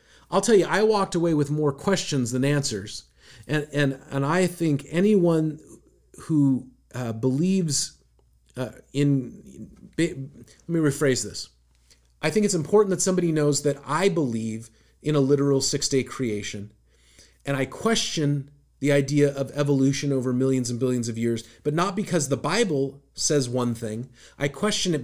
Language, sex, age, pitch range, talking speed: English, male, 40-59, 120-170 Hz, 160 wpm